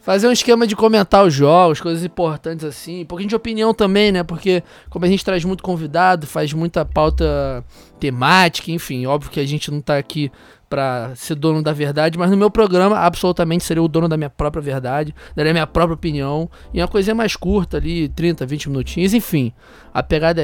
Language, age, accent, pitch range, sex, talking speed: Portuguese, 20-39, Brazilian, 145-170 Hz, male, 205 wpm